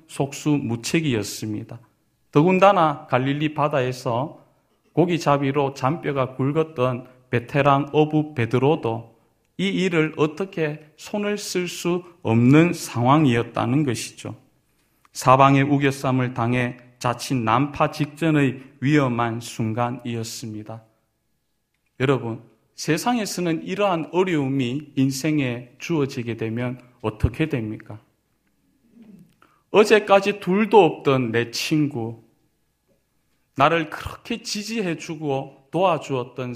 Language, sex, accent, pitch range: Korean, male, native, 125-160 Hz